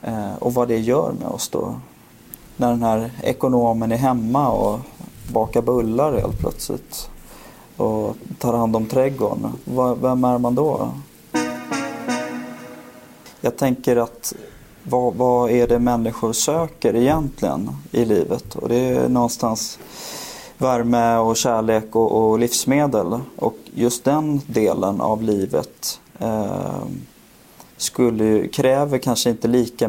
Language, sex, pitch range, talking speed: English, male, 105-125 Hz, 125 wpm